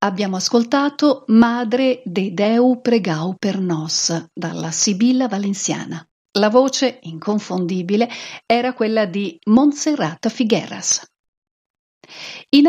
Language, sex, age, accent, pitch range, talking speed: Italian, female, 50-69, native, 185-255 Hz, 95 wpm